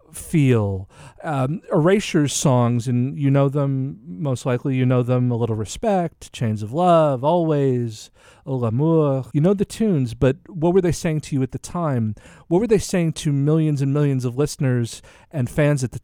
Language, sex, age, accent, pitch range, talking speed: English, male, 40-59, American, 120-150 Hz, 185 wpm